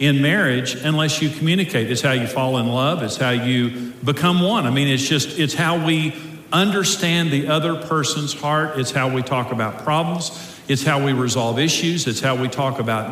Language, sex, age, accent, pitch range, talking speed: English, male, 50-69, American, 135-175 Hz, 200 wpm